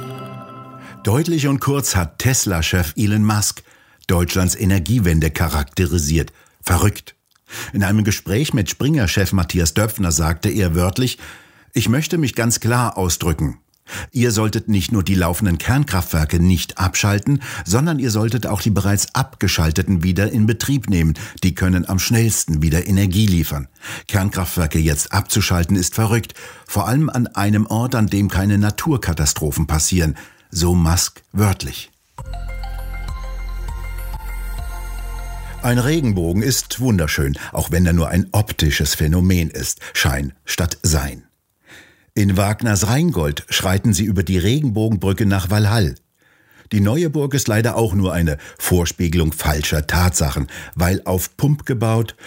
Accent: German